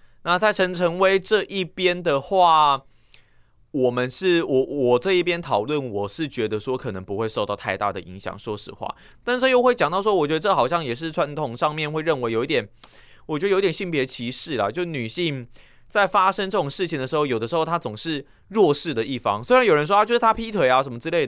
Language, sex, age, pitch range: Chinese, male, 20-39, 125-175 Hz